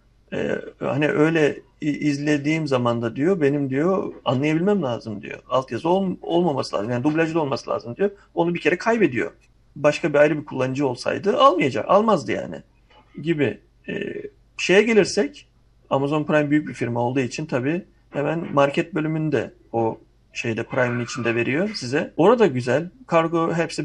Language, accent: Turkish, native